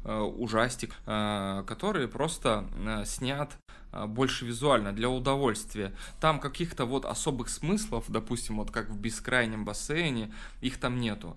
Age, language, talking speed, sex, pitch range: 20-39, Russian, 115 wpm, male, 105-130 Hz